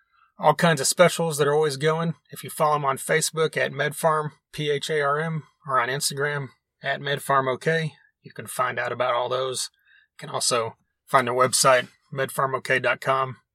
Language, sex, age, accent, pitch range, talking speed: English, male, 30-49, American, 120-150 Hz, 160 wpm